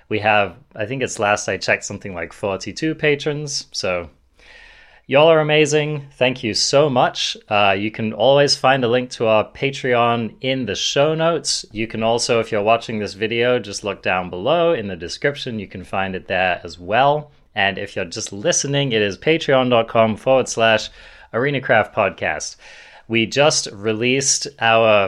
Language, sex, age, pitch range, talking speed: English, male, 30-49, 100-135 Hz, 175 wpm